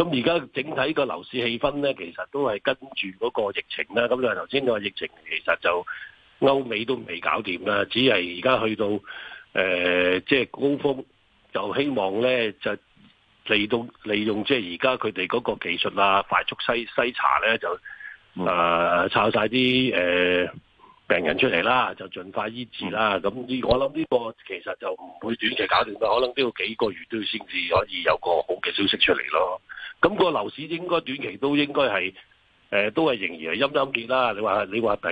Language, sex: Chinese, male